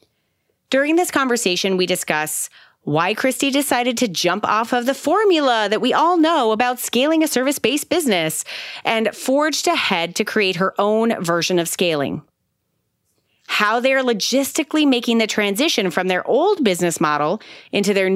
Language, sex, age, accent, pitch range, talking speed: English, female, 30-49, American, 180-250 Hz, 150 wpm